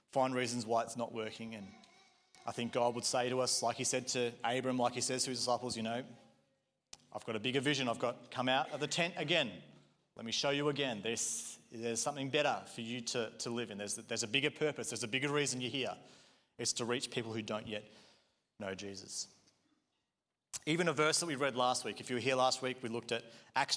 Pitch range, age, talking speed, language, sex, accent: 115-145 Hz, 30-49, 235 wpm, English, male, Australian